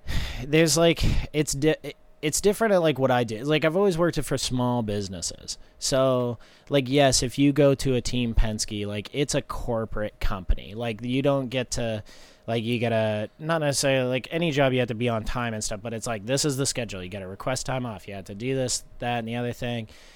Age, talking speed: 30-49, 230 wpm